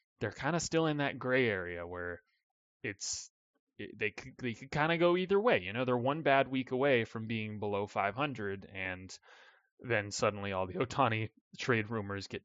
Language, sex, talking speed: English, male, 200 wpm